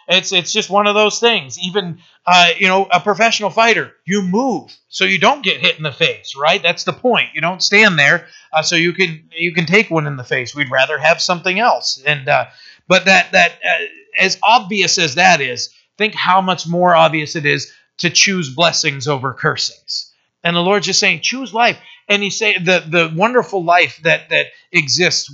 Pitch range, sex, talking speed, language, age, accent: 145-185 Hz, male, 210 wpm, English, 40-59, American